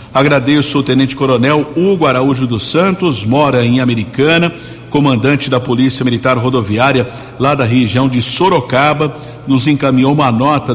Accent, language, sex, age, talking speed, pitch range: Brazilian, Portuguese, male, 60-79, 135 wpm, 125-145 Hz